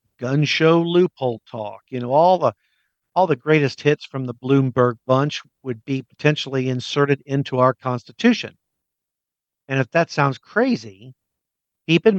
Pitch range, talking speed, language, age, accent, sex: 120-150 Hz, 150 wpm, English, 50-69, American, male